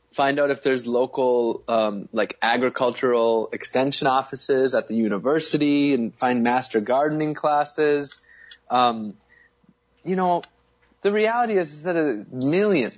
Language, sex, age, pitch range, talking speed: English, male, 20-39, 120-150 Hz, 125 wpm